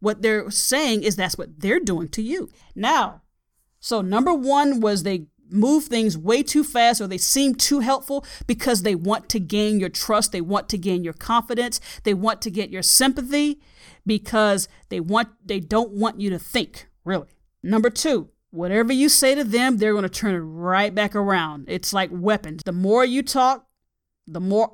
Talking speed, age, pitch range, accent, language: 190 wpm, 40-59, 200-260 Hz, American, English